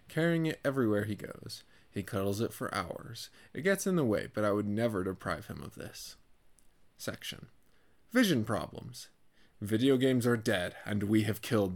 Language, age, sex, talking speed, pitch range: English, 20-39, male, 175 wpm, 100-130 Hz